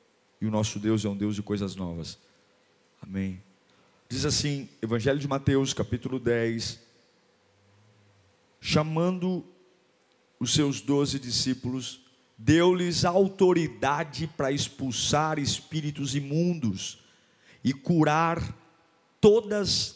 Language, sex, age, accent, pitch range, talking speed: Portuguese, male, 50-69, Brazilian, 110-165 Hz, 95 wpm